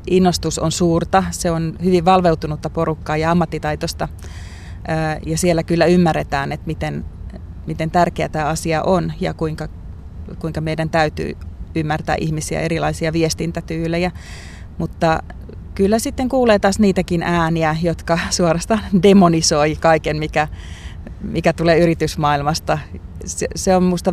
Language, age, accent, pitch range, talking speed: Finnish, 30-49, native, 150-175 Hz, 120 wpm